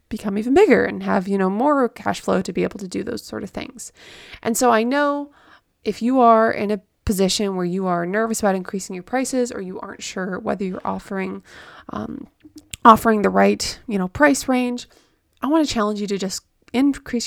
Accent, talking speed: American, 210 wpm